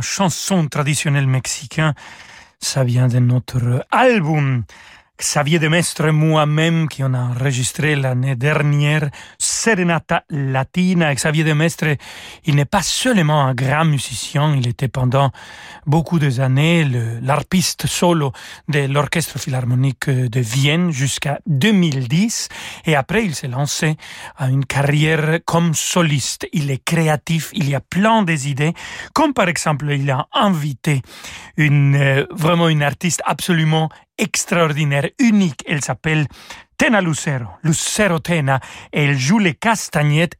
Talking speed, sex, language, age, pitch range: 130 wpm, male, French, 40-59, 140-180 Hz